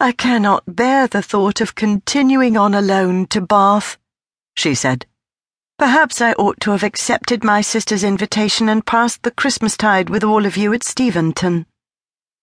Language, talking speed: English, 155 wpm